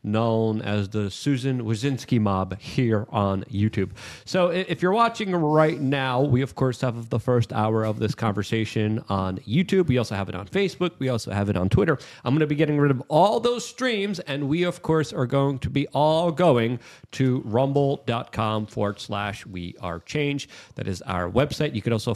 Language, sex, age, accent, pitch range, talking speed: English, male, 30-49, American, 115-155 Hz, 200 wpm